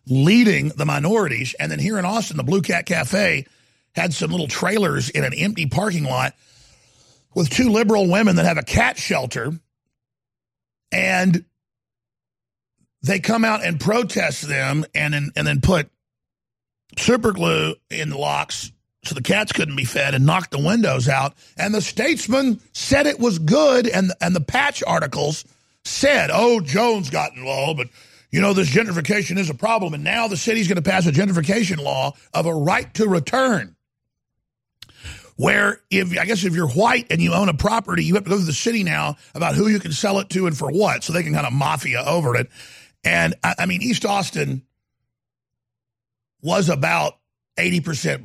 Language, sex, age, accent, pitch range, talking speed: English, male, 50-69, American, 135-200 Hz, 180 wpm